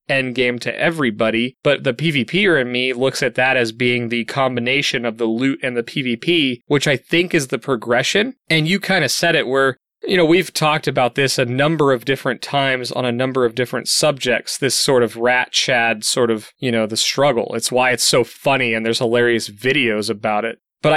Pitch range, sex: 120-150 Hz, male